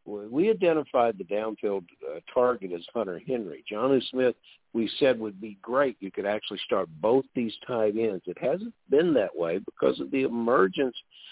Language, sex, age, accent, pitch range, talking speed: English, male, 60-79, American, 95-130 Hz, 175 wpm